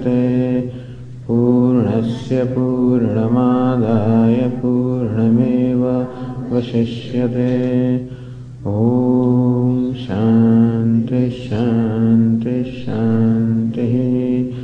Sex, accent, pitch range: male, Indian, 120-125 Hz